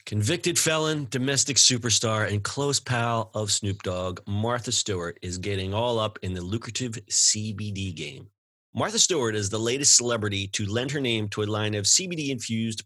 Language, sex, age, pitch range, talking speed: English, male, 30-49, 105-140 Hz, 170 wpm